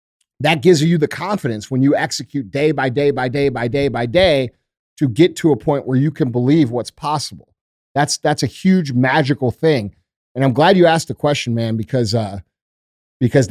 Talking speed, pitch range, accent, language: 200 wpm, 125-155 Hz, American, English